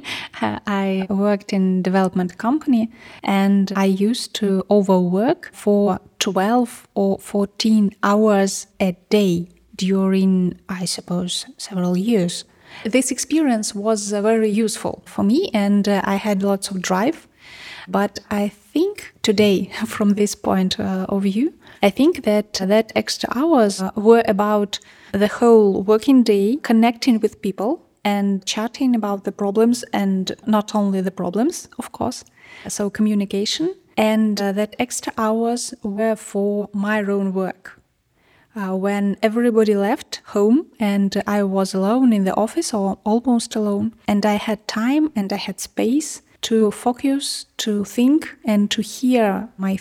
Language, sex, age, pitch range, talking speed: English, female, 20-39, 200-230 Hz, 140 wpm